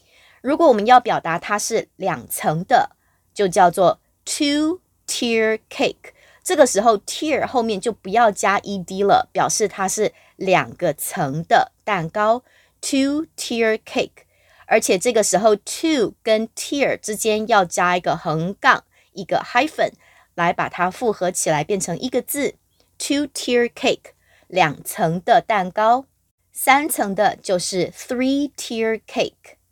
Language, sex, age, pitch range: English, female, 20-39, 185-260 Hz